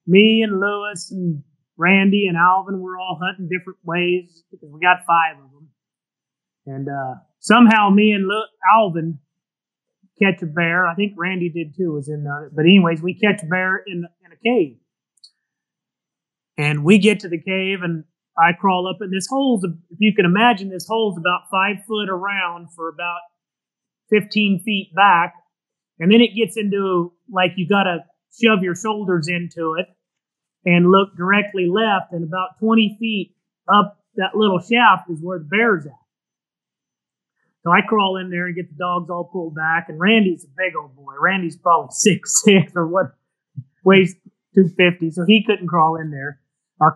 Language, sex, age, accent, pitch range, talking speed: English, male, 30-49, American, 170-200 Hz, 175 wpm